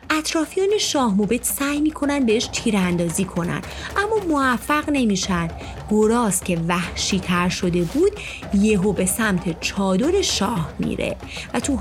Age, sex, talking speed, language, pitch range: 30-49, female, 125 wpm, Persian, 185-280 Hz